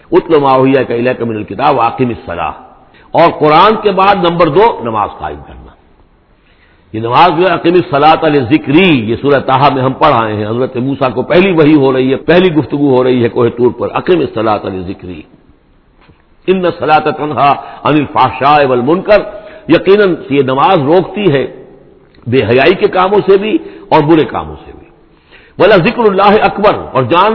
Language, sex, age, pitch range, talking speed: English, male, 60-79, 130-195 Hz, 95 wpm